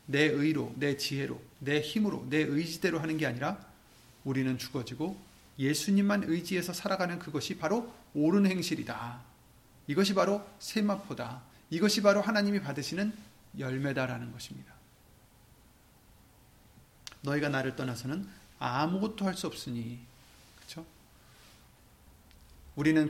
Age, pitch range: 30-49, 135-200 Hz